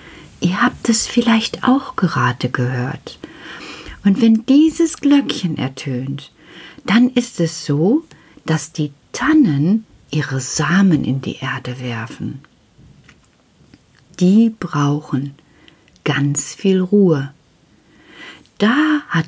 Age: 50-69